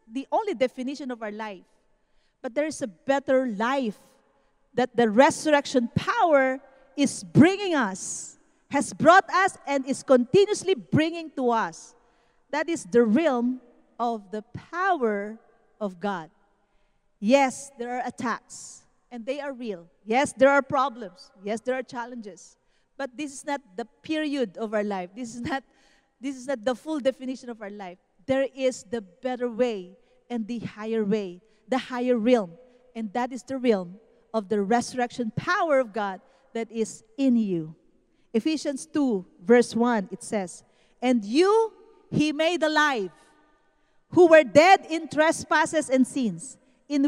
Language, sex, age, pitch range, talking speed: English, female, 40-59, 225-300 Hz, 150 wpm